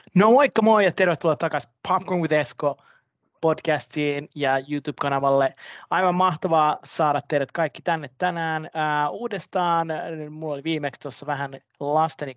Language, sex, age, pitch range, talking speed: Finnish, male, 30-49, 140-175 Hz, 130 wpm